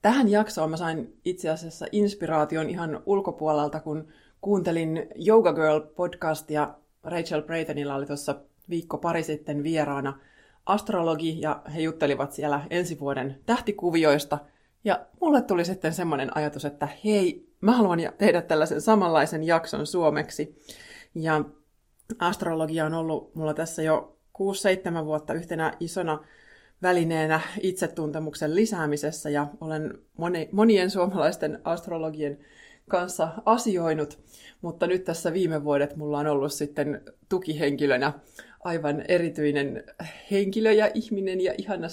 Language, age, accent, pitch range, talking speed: Finnish, 20-39, native, 155-195 Hz, 120 wpm